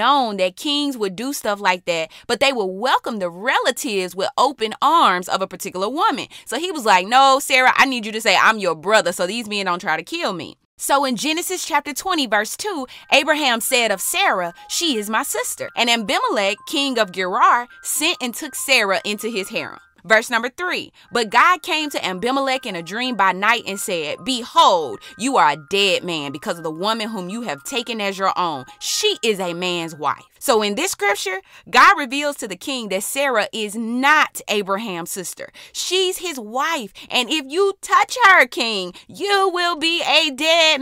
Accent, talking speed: American, 200 wpm